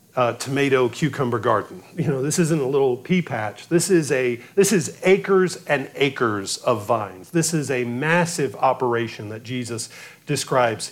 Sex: male